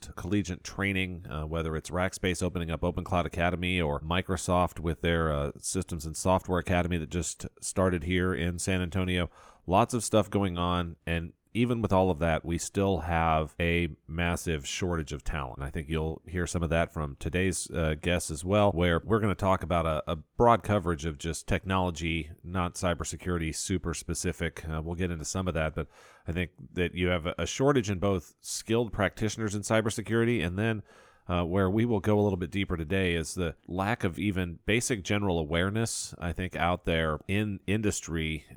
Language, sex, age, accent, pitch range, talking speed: English, male, 40-59, American, 80-95 Hz, 190 wpm